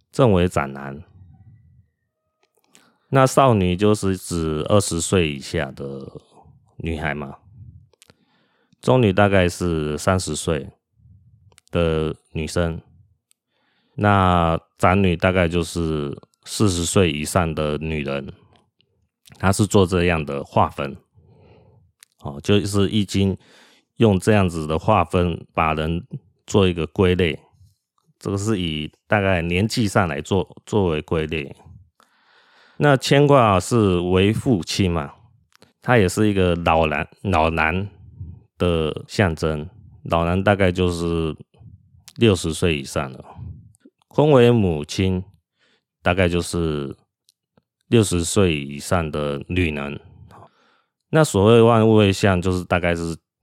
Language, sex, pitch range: Chinese, male, 80-105 Hz